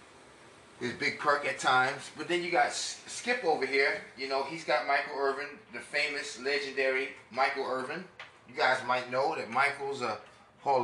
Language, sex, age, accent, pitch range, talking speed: English, male, 20-39, American, 120-145 Hz, 170 wpm